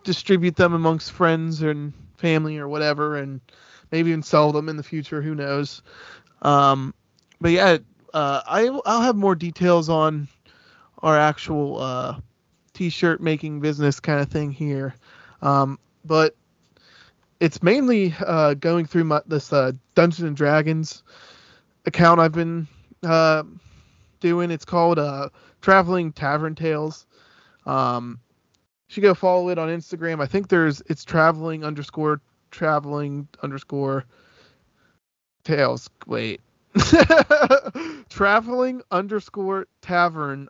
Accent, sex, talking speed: American, male, 120 wpm